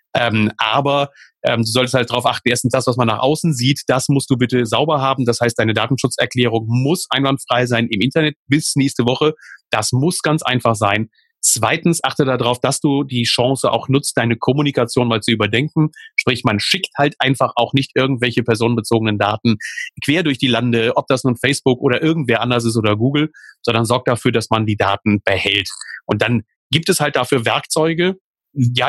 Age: 40-59